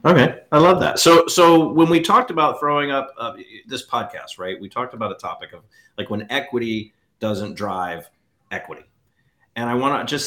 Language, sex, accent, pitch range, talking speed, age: English, male, American, 95-120 Hz, 195 wpm, 40-59